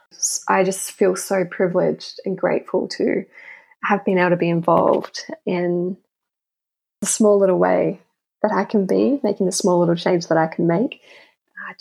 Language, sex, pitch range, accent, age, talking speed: English, female, 175-210 Hz, Australian, 10-29, 170 wpm